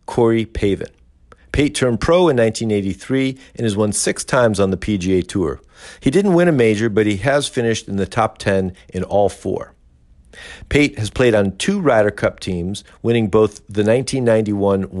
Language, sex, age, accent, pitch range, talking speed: English, male, 50-69, American, 95-120 Hz, 175 wpm